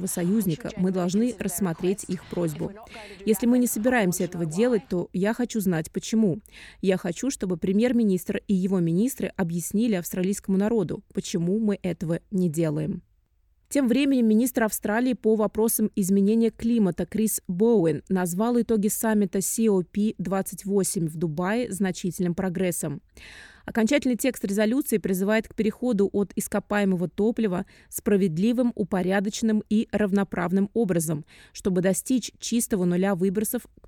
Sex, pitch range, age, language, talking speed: female, 185-225 Hz, 20-39, Russian, 130 wpm